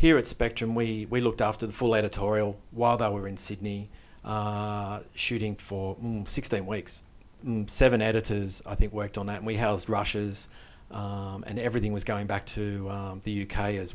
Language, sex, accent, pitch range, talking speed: English, male, Australian, 100-110 Hz, 190 wpm